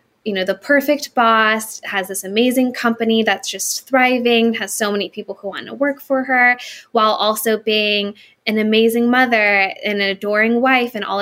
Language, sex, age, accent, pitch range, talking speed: English, female, 10-29, American, 205-245 Hz, 180 wpm